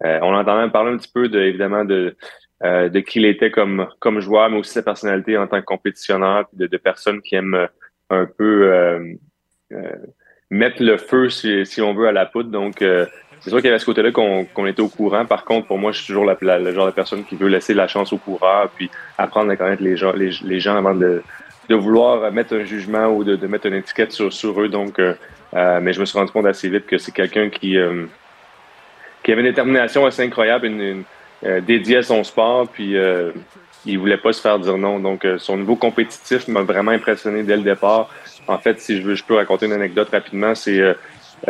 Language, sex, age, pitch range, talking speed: French, male, 30-49, 95-105 Hz, 245 wpm